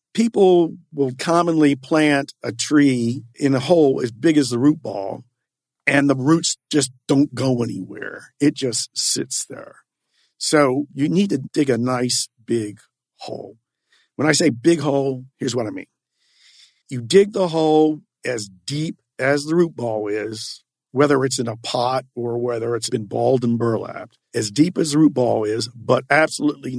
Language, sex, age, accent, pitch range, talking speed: English, male, 50-69, American, 125-155 Hz, 170 wpm